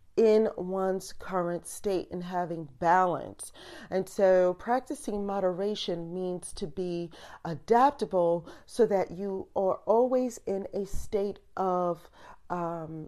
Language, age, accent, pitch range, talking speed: English, 40-59, American, 185-225 Hz, 115 wpm